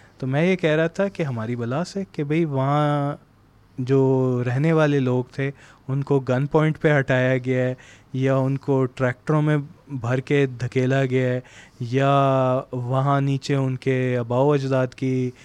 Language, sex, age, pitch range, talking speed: Urdu, male, 20-39, 130-155 Hz, 175 wpm